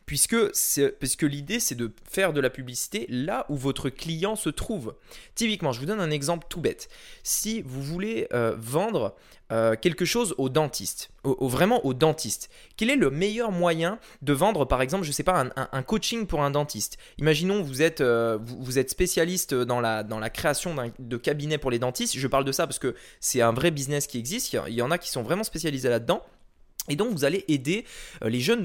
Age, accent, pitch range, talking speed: 20-39, French, 135-200 Hz, 220 wpm